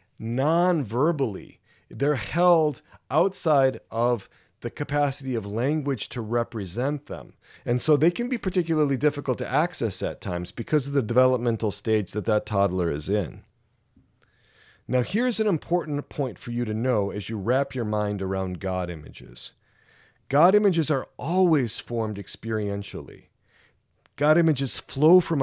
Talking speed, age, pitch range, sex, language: 145 wpm, 40-59, 110-150 Hz, male, English